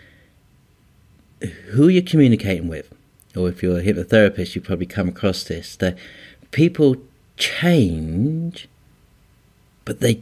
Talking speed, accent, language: 110 wpm, British, English